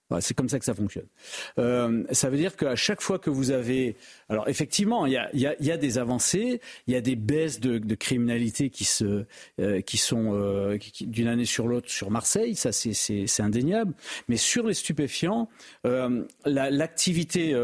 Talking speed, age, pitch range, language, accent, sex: 210 wpm, 40-59, 115-155 Hz, French, French, male